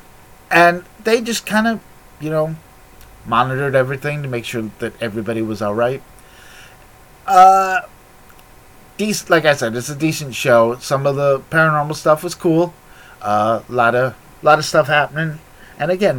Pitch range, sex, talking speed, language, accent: 115-155 Hz, male, 160 wpm, English, American